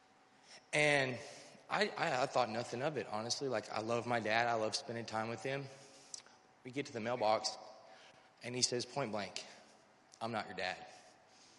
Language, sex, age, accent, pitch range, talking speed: English, male, 30-49, American, 110-125 Hz, 170 wpm